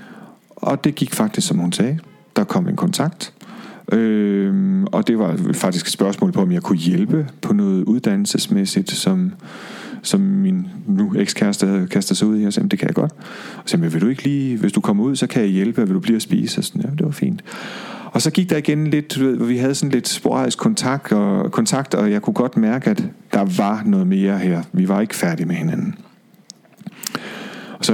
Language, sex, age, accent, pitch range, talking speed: Danish, male, 40-59, native, 140-210 Hz, 220 wpm